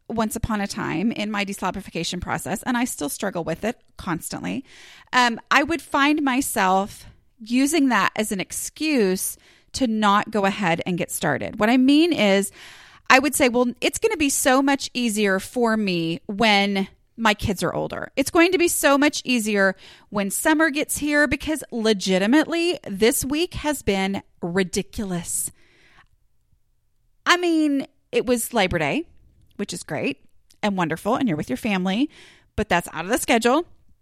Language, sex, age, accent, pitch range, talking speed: English, female, 30-49, American, 190-275 Hz, 165 wpm